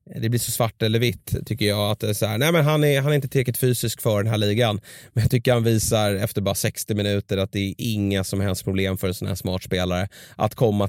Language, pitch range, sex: Swedish, 105-150 Hz, male